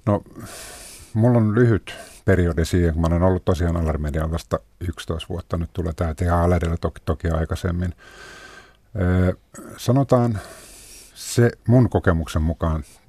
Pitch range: 80-95 Hz